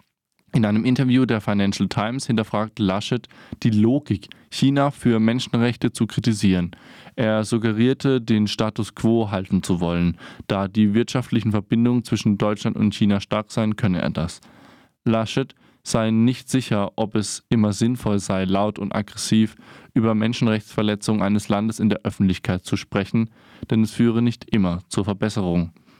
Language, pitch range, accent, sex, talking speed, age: German, 100-115 Hz, German, male, 150 wpm, 20-39